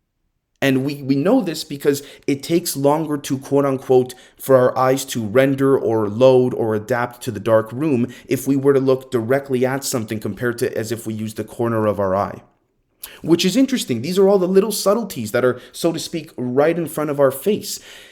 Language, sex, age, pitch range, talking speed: English, male, 30-49, 115-155 Hz, 210 wpm